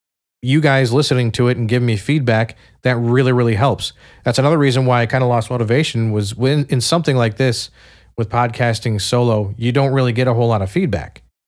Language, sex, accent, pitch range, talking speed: English, male, American, 105-130 Hz, 210 wpm